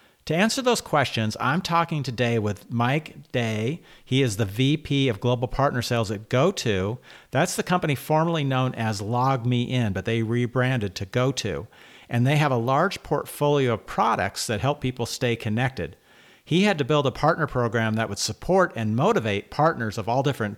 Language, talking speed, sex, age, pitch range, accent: English, 180 wpm, male, 50-69, 110-145 Hz, American